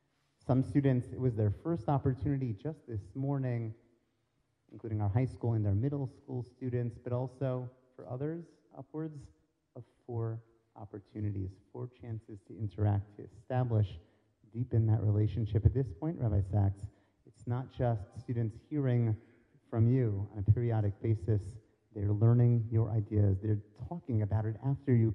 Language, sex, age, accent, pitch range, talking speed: English, male, 30-49, American, 105-125 Hz, 150 wpm